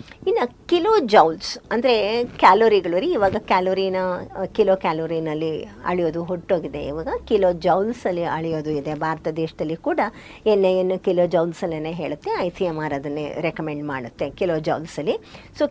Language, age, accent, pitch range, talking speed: Kannada, 50-69, native, 175-245 Hz, 120 wpm